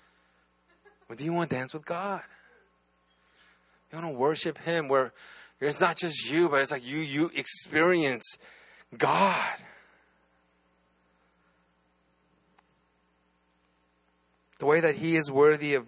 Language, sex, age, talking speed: English, male, 30-49, 120 wpm